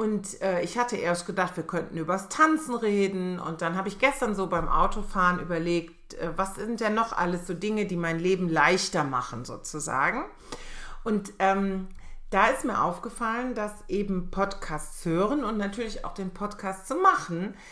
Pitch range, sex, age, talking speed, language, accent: 170-215 Hz, female, 40-59, 175 wpm, German, German